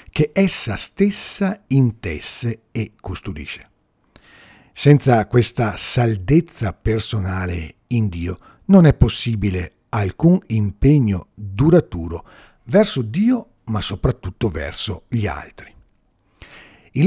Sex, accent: male, native